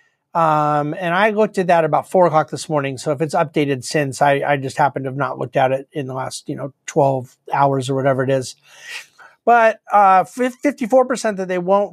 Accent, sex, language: American, male, English